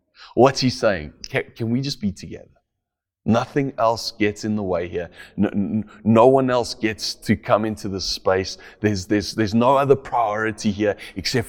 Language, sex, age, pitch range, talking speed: English, male, 30-49, 95-110 Hz, 180 wpm